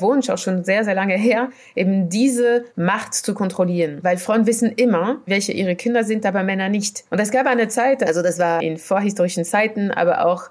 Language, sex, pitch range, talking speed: German, female, 180-220 Hz, 195 wpm